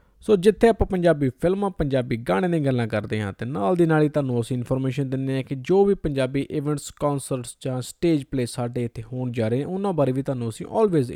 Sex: male